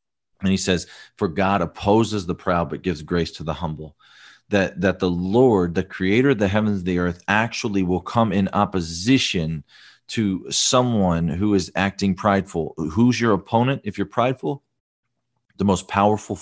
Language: English